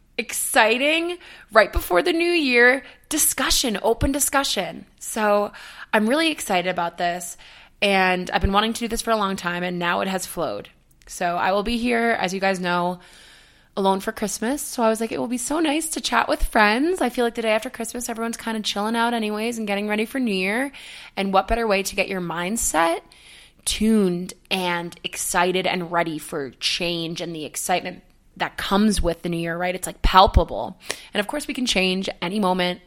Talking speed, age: 205 wpm, 20-39